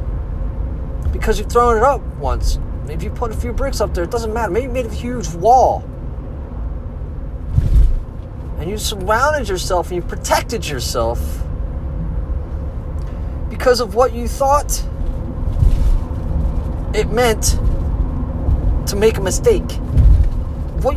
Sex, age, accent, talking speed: male, 30-49, American, 125 wpm